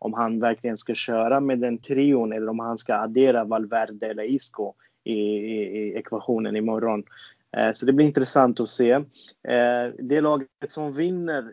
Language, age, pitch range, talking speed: Swedish, 30-49, 115-135 Hz, 160 wpm